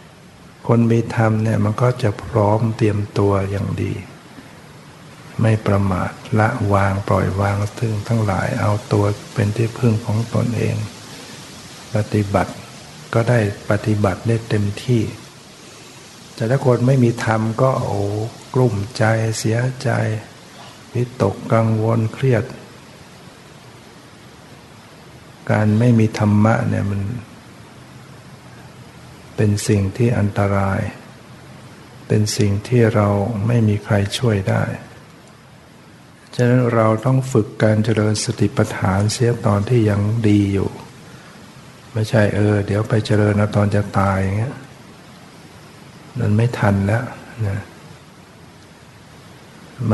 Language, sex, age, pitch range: Thai, male, 60-79, 105-120 Hz